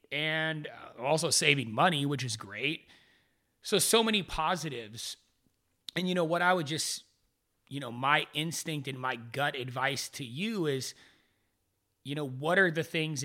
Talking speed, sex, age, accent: 160 wpm, male, 30-49, American